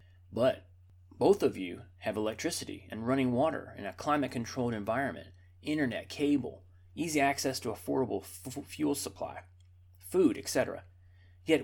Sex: male